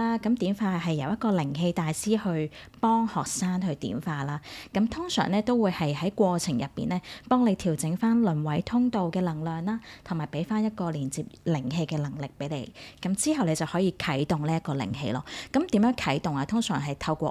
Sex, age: female, 20-39